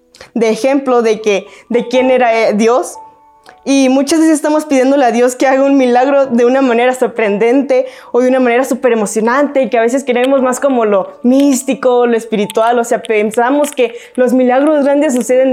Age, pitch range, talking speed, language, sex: 20-39, 235-275 Hz, 180 wpm, Spanish, female